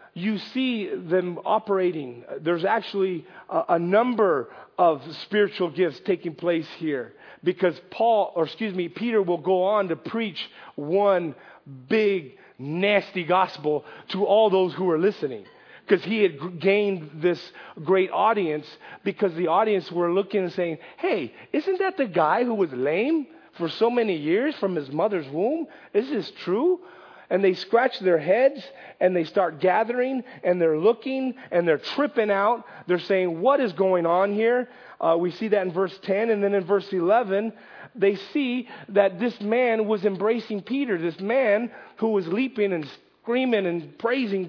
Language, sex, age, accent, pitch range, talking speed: English, male, 40-59, American, 180-225 Hz, 165 wpm